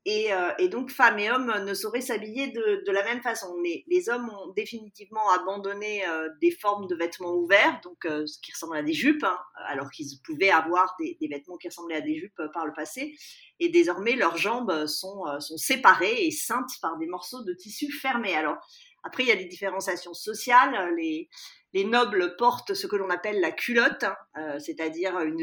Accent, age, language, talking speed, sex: French, 40-59, French, 210 wpm, female